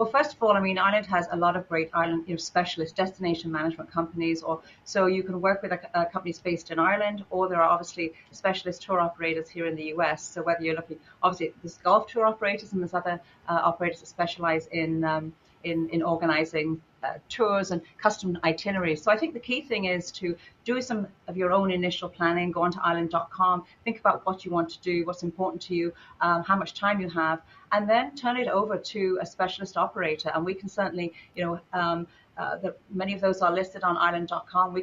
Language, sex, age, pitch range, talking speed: English, female, 40-59, 170-195 Hz, 220 wpm